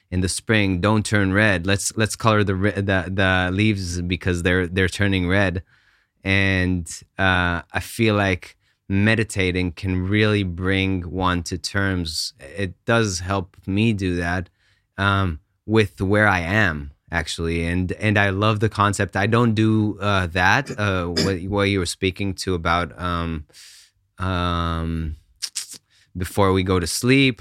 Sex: male